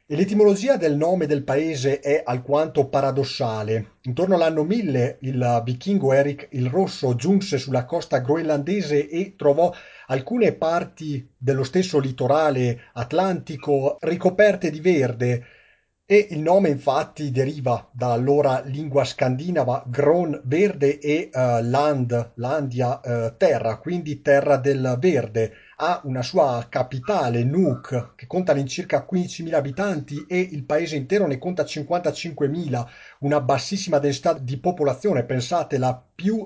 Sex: male